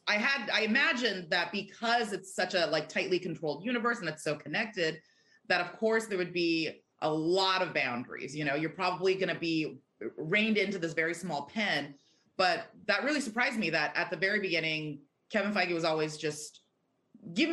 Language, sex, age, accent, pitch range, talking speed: English, female, 30-49, American, 150-205 Hz, 190 wpm